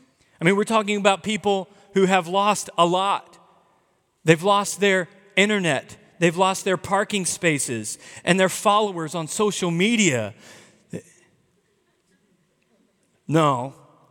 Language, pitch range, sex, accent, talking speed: English, 135-185 Hz, male, American, 115 wpm